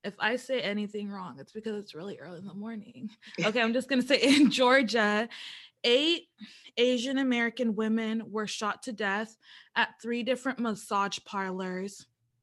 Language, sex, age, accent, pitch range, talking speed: English, female, 20-39, American, 200-235 Hz, 160 wpm